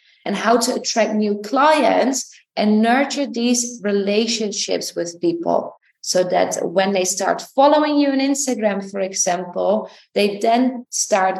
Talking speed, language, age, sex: 135 wpm, English, 20-39, female